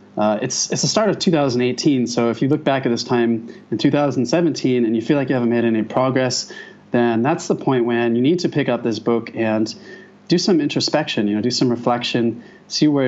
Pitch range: 120-165 Hz